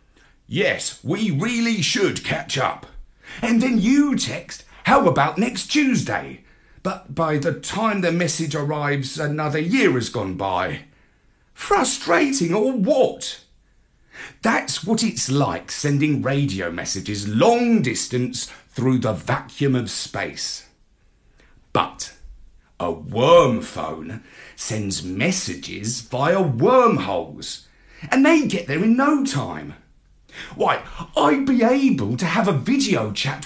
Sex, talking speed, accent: male, 120 wpm, British